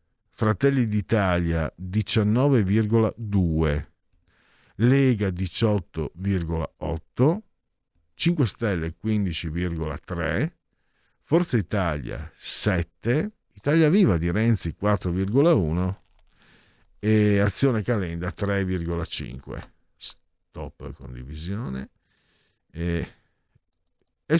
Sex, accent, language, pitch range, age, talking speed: male, native, Italian, 85-125 Hz, 50-69, 55 wpm